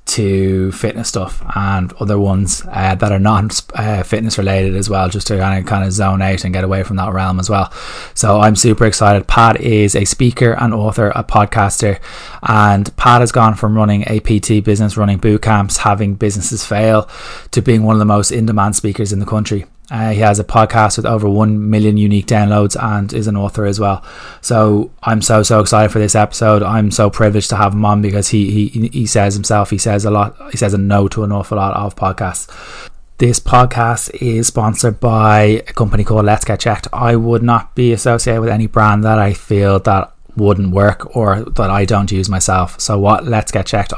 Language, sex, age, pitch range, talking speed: English, male, 20-39, 100-110 Hz, 210 wpm